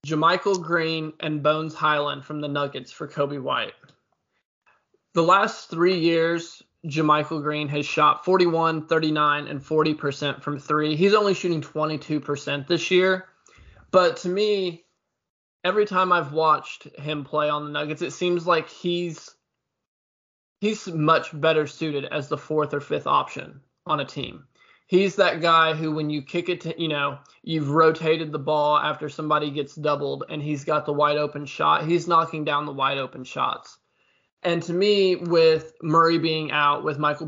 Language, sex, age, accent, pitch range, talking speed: English, male, 20-39, American, 150-165 Hz, 165 wpm